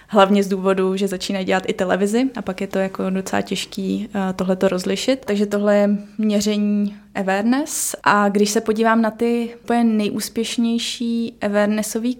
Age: 20-39